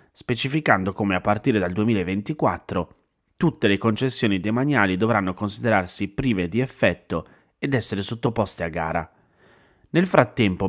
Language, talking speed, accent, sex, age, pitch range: Italian, 125 wpm, native, male, 30-49, 90-115 Hz